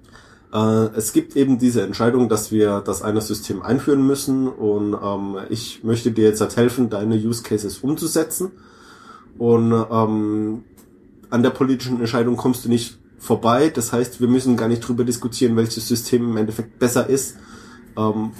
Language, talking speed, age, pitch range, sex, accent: English, 155 wpm, 20-39, 105-120 Hz, male, German